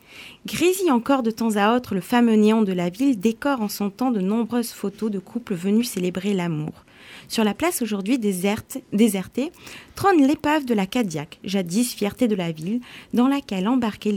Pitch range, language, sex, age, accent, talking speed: 195-245 Hz, French, female, 30-49, French, 180 wpm